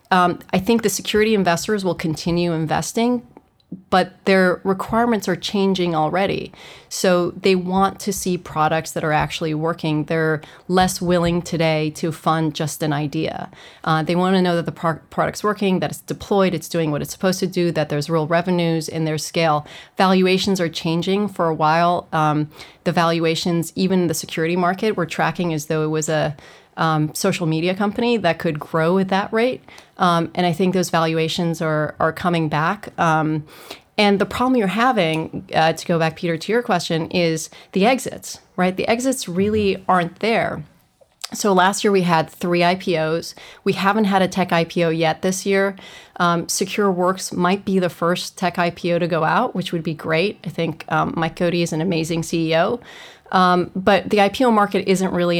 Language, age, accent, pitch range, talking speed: English, 30-49, American, 160-190 Hz, 185 wpm